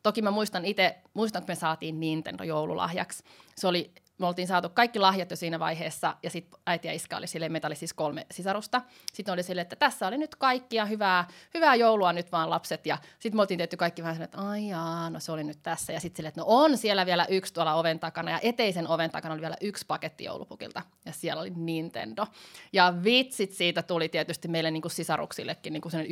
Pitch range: 165-205 Hz